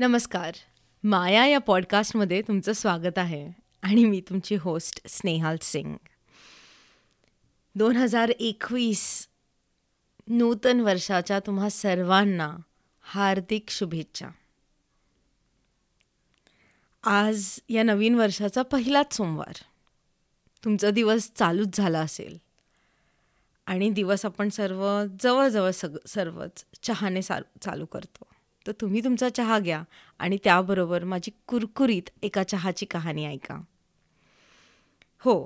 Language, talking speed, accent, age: Marathi, 90 wpm, native, 20-39